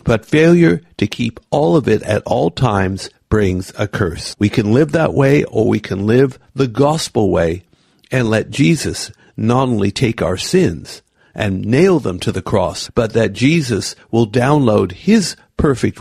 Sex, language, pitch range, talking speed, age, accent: male, English, 100-135 Hz, 170 wpm, 60-79, American